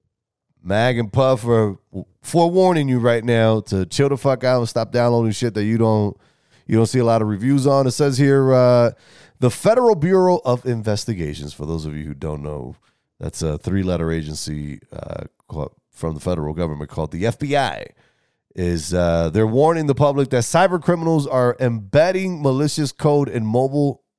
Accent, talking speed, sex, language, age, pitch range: American, 180 wpm, male, English, 20-39, 95-145 Hz